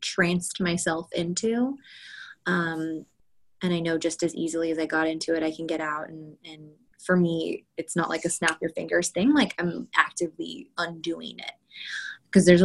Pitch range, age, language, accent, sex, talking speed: 160-180 Hz, 20-39, English, American, female, 180 wpm